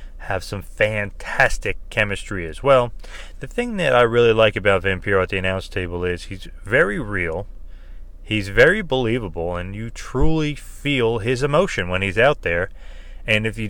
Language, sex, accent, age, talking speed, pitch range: English, male, American, 30-49, 165 wpm, 95-115 Hz